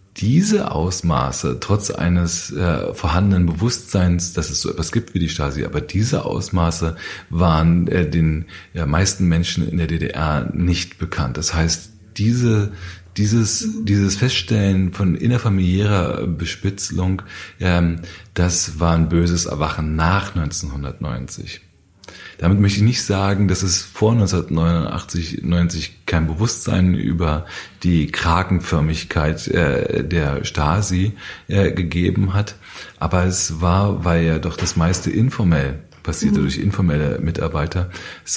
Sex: male